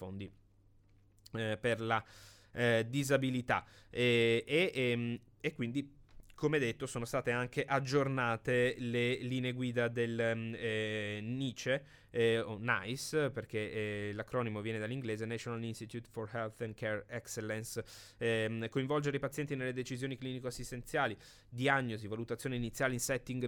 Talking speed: 130 wpm